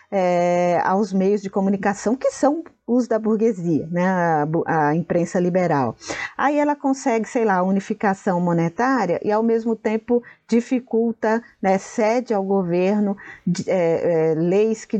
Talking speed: 130 wpm